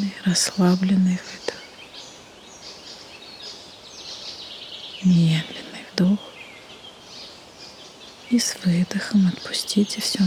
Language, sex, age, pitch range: Russian, female, 20-39, 180-205 Hz